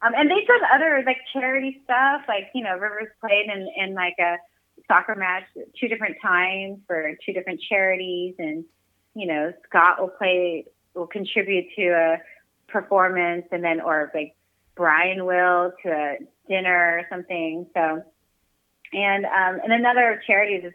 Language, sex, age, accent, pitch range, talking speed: English, female, 30-49, American, 165-210 Hz, 160 wpm